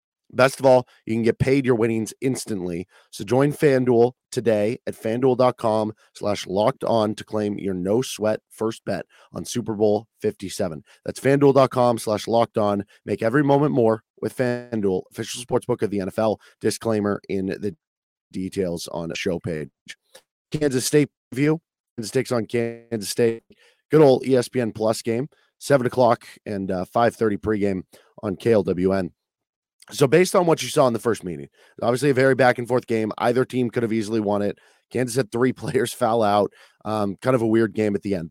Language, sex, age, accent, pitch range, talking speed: English, male, 30-49, American, 105-130 Hz, 175 wpm